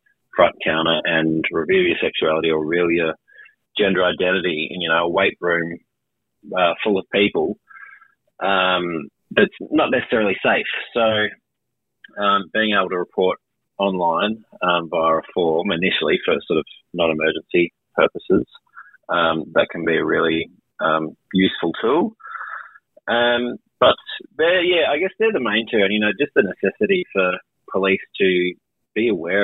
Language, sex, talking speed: English, male, 145 wpm